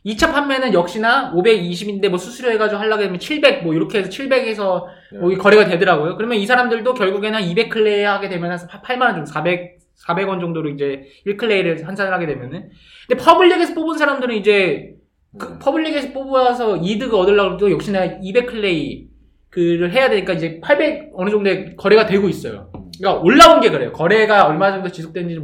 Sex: male